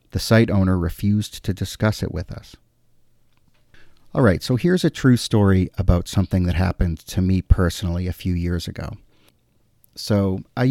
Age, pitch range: 40-59, 95-110 Hz